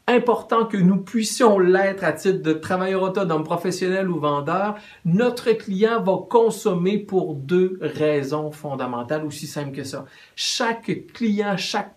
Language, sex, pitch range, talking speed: French, male, 155-215 Hz, 140 wpm